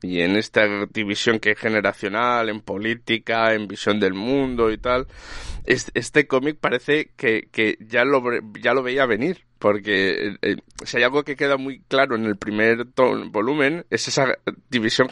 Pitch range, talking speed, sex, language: 100-120 Hz, 170 wpm, male, Spanish